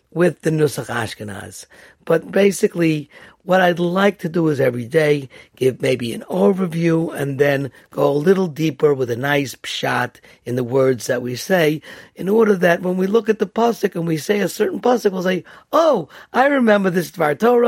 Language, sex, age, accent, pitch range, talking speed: English, male, 60-79, American, 130-185 Hz, 195 wpm